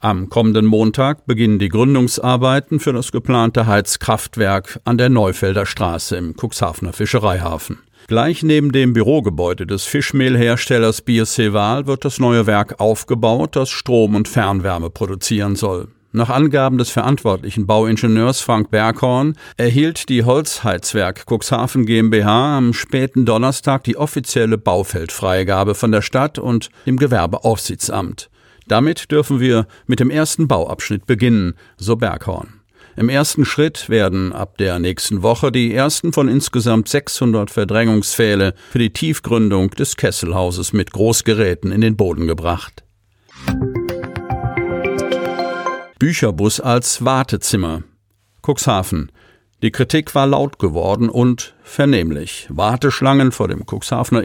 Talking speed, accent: 120 wpm, German